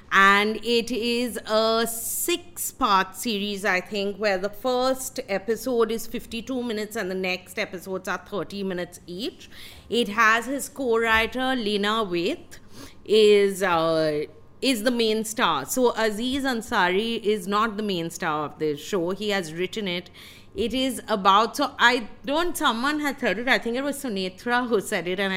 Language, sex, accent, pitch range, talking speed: English, female, Indian, 190-240 Hz, 165 wpm